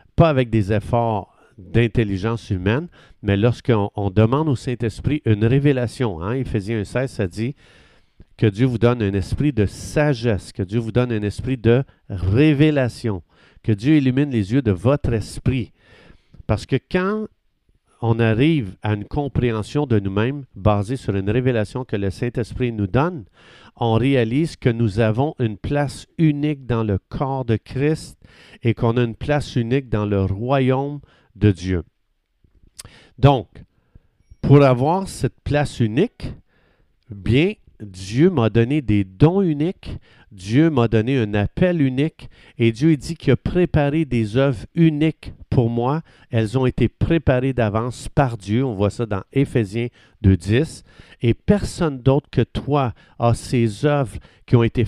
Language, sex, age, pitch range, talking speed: French, male, 50-69, 110-140 Hz, 150 wpm